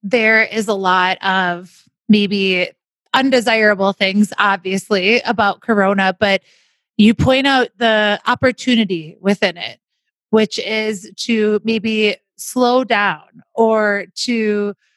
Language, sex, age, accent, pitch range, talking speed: English, female, 30-49, American, 195-235 Hz, 110 wpm